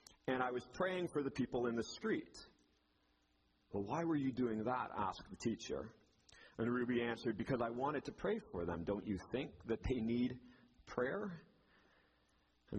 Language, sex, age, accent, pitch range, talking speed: English, male, 40-59, American, 80-110 Hz, 175 wpm